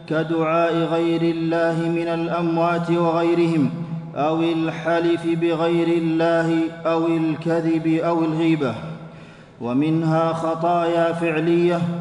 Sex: male